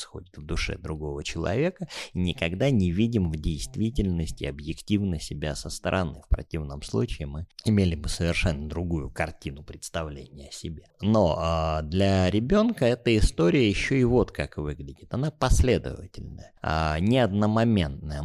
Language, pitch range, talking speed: Russian, 80-110 Hz, 135 wpm